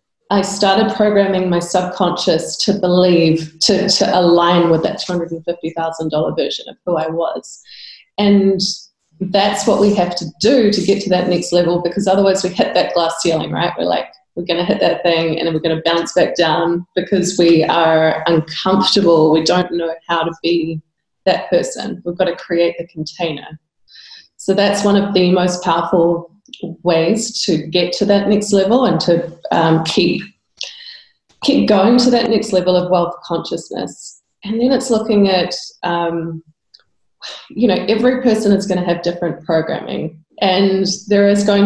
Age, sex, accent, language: 20-39, female, Australian, English